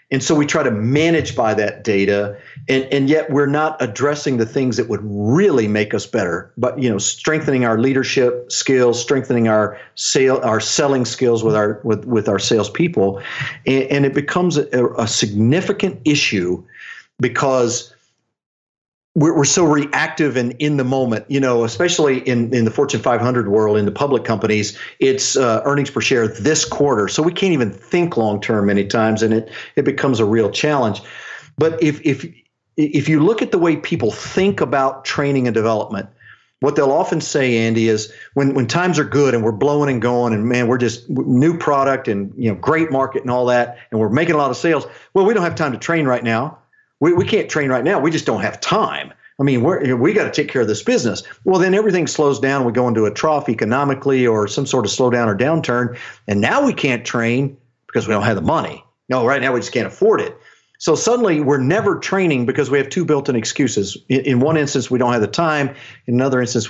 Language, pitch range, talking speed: English, 115-145 Hz, 215 wpm